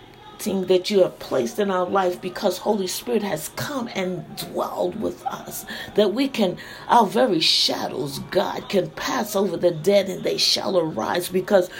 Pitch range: 185-215 Hz